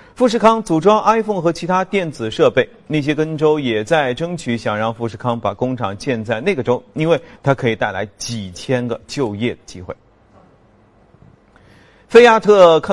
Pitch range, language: 125-180 Hz, Chinese